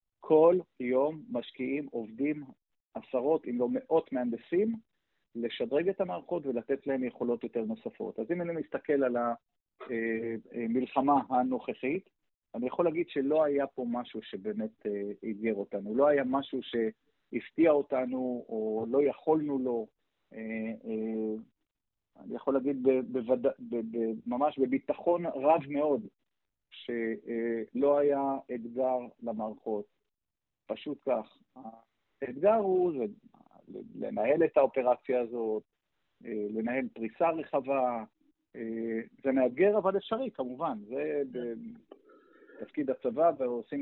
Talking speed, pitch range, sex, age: 105 wpm, 115-150 Hz, male, 50-69